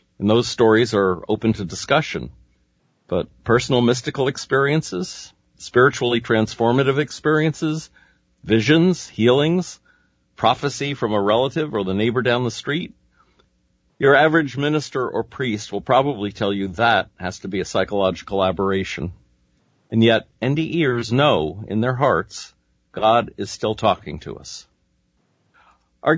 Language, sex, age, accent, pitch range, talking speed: English, male, 50-69, American, 100-130 Hz, 130 wpm